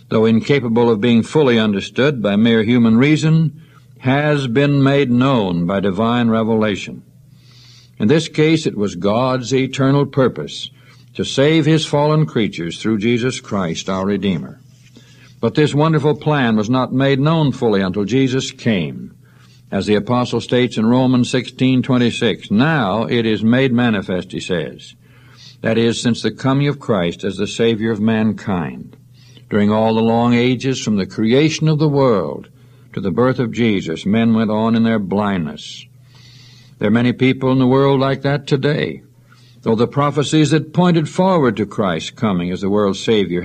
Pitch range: 115-135 Hz